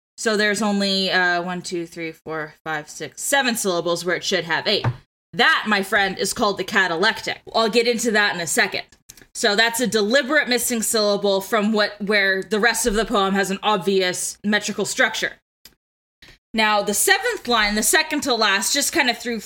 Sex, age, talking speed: female, 10-29, 190 wpm